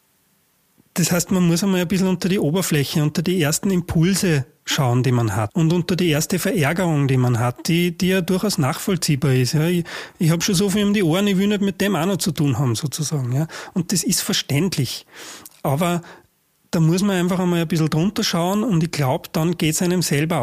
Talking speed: 225 wpm